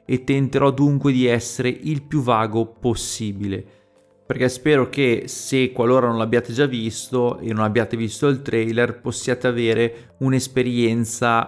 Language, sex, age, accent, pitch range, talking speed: Italian, male, 30-49, native, 110-125 Hz, 140 wpm